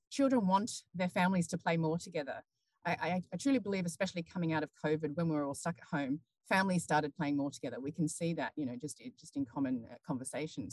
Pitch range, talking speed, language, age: 165-235 Hz, 230 wpm, English, 30-49